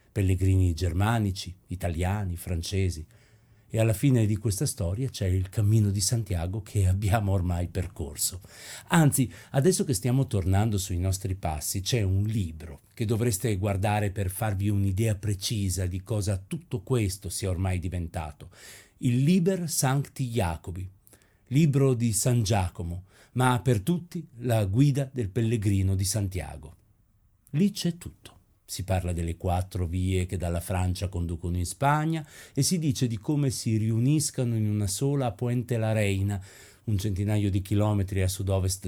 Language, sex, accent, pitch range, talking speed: Italian, male, native, 95-120 Hz, 145 wpm